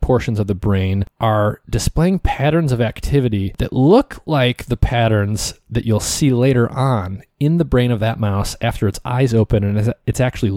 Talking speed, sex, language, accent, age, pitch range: 180 wpm, male, English, American, 30-49, 100-125 Hz